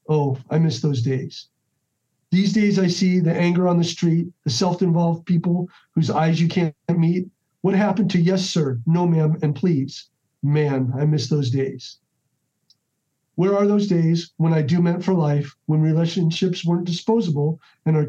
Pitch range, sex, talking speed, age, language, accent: 140-170 Hz, male, 175 wpm, 50-69, English, American